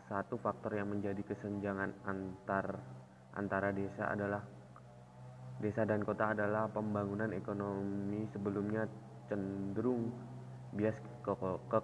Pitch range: 100-110 Hz